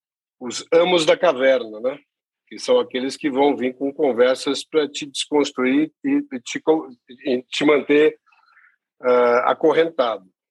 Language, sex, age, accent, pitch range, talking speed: Portuguese, male, 50-69, Brazilian, 120-165 Hz, 130 wpm